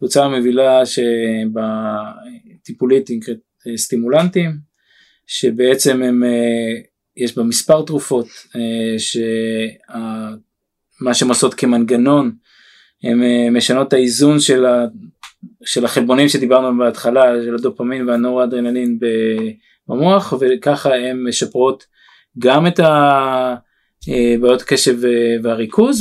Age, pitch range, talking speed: 20-39, 120-145 Hz, 80 wpm